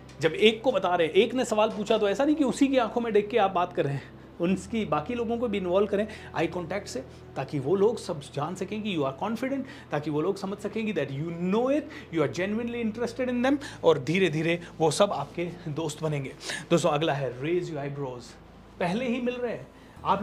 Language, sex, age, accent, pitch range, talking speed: Hindi, male, 30-49, native, 185-255 Hz, 190 wpm